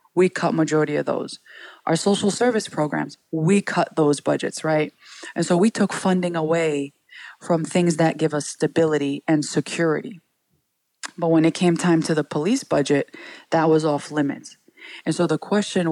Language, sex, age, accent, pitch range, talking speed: English, female, 20-39, American, 155-175 Hz, 170 wpm